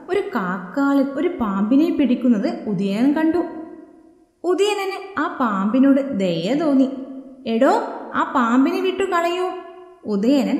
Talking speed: 100 wpm